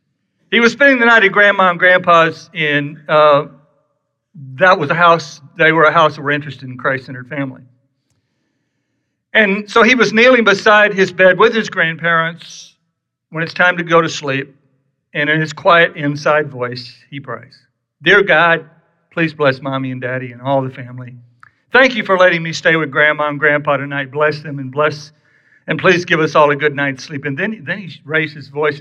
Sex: male